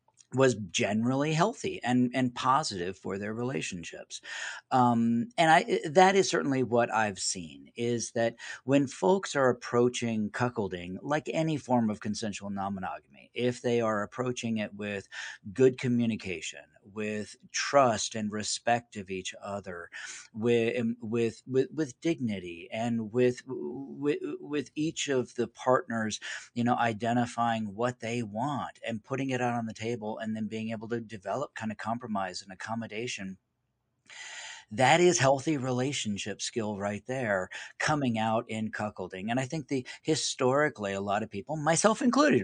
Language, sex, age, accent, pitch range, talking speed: English, male, 40-59, American, 105-135 Hz, 145 wpm